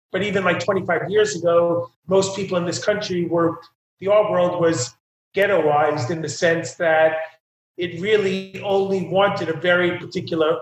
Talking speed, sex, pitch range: 160 wpm, male, 165-195 Hz